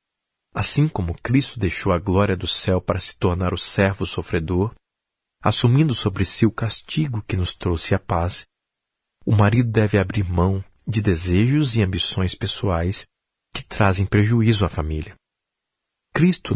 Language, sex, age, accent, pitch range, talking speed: Portuguese, male, 40-59, Brazilian, 90-115 Hz, 145 wpm